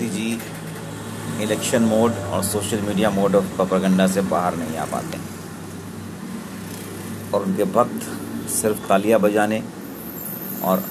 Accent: native